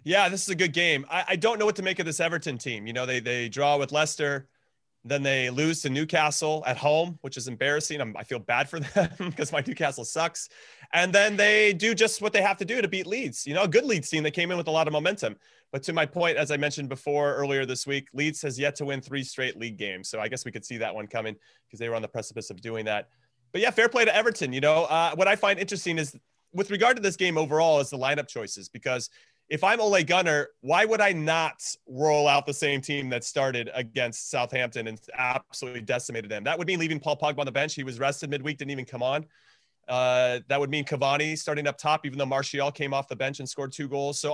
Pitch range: 135-175 Hz